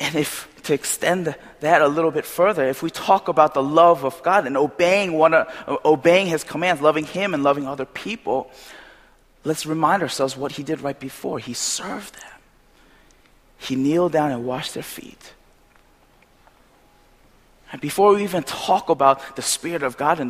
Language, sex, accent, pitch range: Korean, male, American, 140-165 Hz